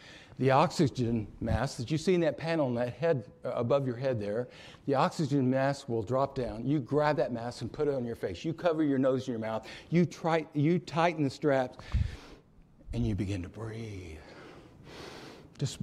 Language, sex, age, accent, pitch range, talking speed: English, male, 60-79, American, 120-175 Hz, 195 wpm